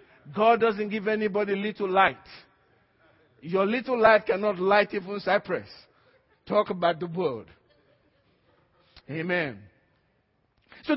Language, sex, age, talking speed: English, male, 50-69, 105 wpm